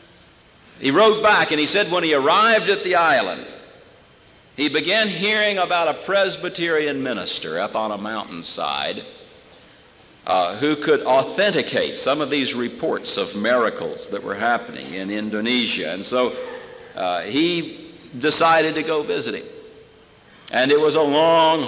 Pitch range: 125-180 Hz